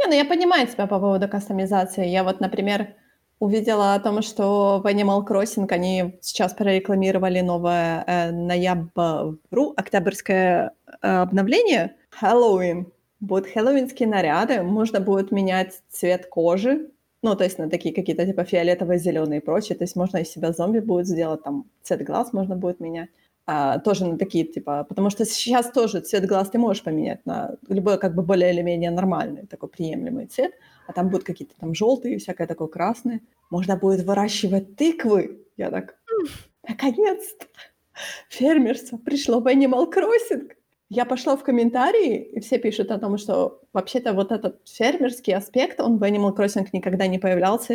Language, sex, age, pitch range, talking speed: Ukrainian, female, 20-39, 180-235 Hz, 160 wpm